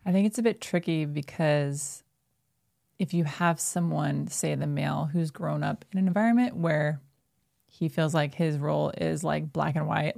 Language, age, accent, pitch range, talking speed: English, 20-39, American, 155-180 Hz, 185 wpm